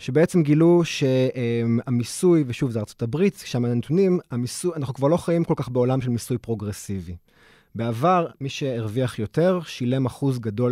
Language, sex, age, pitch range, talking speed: Hebrew, male, 30-49, 115-155 Hz, 150 wpm